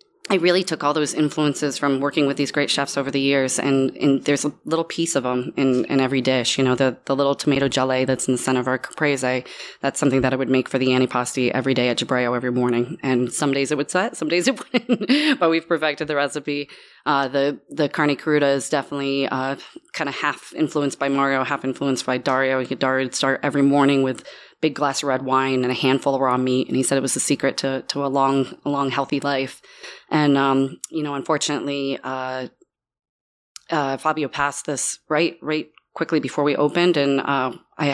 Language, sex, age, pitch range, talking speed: English, female, 20-39, 130-150 Hz, 220 wpm